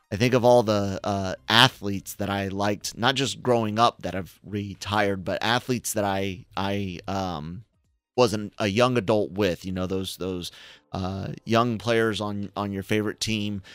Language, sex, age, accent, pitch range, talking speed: English, male, 30-49, American, 95-115 Hz, 175 wpm